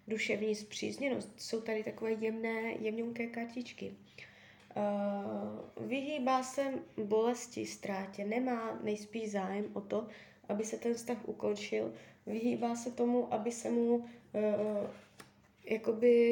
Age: 20-39